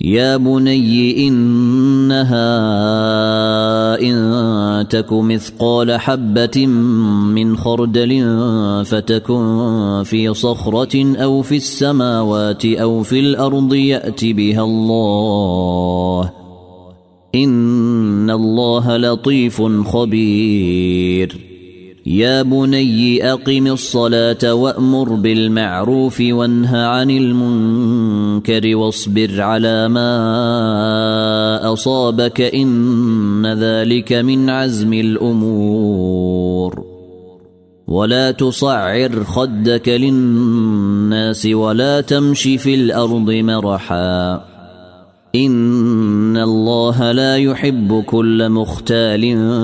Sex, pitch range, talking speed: male, 105-120 Hz, 70 wpm